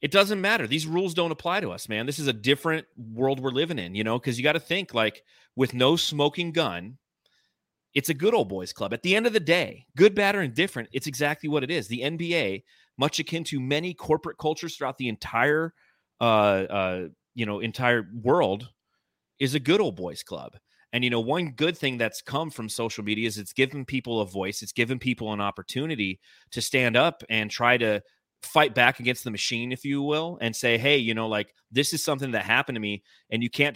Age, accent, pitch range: 30-49, American, 105-145 Hz